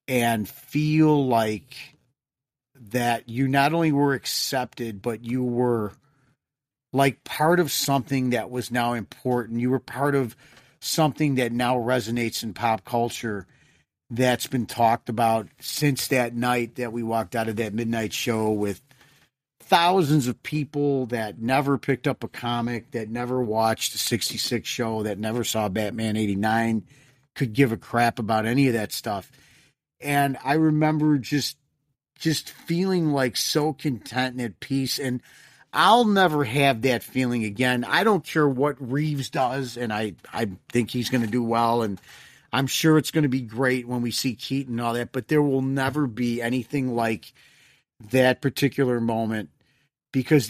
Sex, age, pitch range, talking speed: male, 40-59, 115-140 Hz, 160 wpm